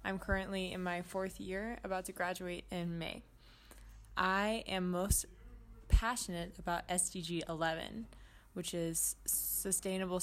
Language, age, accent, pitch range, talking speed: English, 20-39, American, 175-200 Hz, 125 wpm